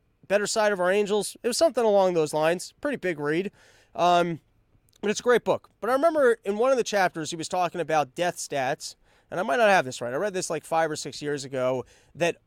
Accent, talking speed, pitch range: American, 245 wpm, 155-200 Hz